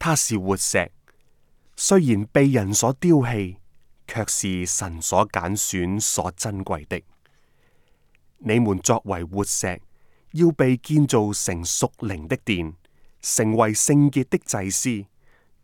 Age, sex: 20-39, male